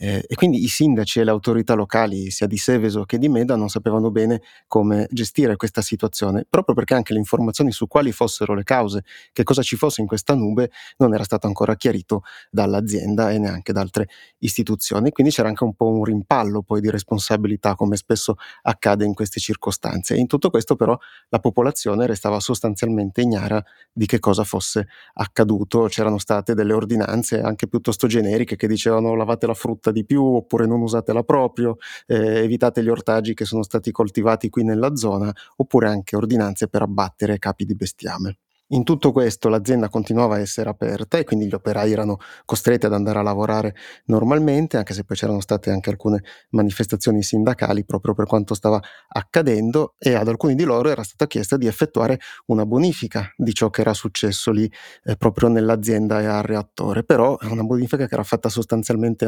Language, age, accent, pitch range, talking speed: Italian, 30-49, native, 105-120 Hz, 185 wpm